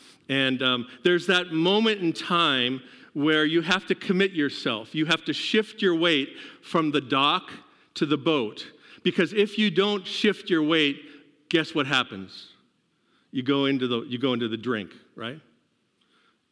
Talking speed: 155 wpm